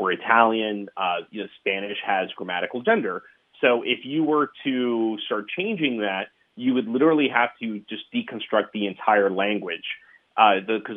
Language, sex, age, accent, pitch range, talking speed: English, male, 30-49, American, 100-120 Hz, 155 wpm